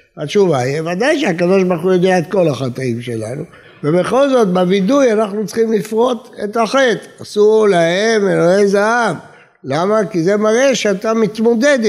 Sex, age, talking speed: male, 60-79, 135 wpm